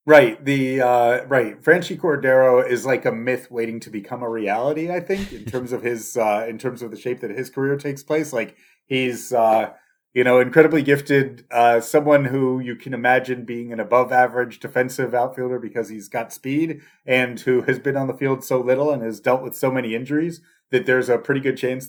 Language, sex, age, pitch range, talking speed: English, male, 30-49, 115-140 Hz, 210 wpm